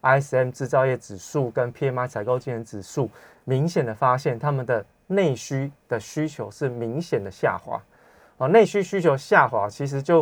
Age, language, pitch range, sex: 20-39, Chinese, 120-160 Hz, male